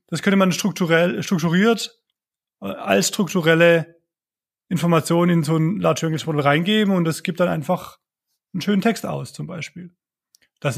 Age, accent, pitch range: 20-39, German, 155-185 Hz